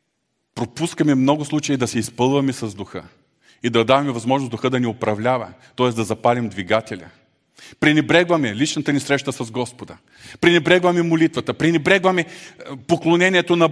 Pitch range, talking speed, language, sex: 125-180 Hz, 135 wpm, Bulgarian, male